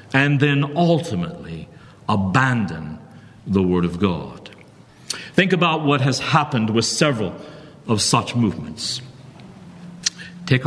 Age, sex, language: 50-69, male, English